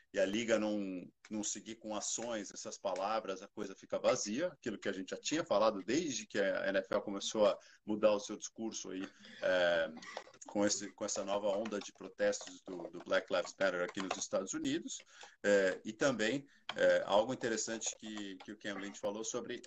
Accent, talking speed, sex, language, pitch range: Brazilian, 190 wpm, male, Portuguese, 100-135 Hz